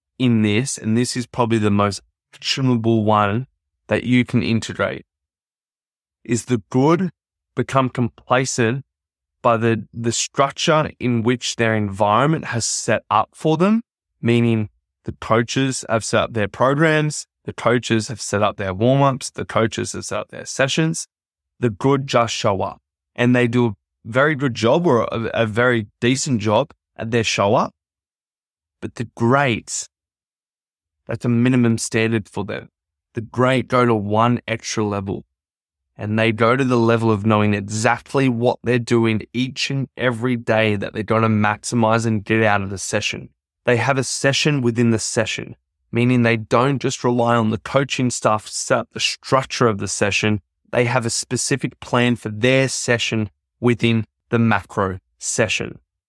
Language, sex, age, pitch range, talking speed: English, male, 20-39, 105-125 Hz, 165 wpm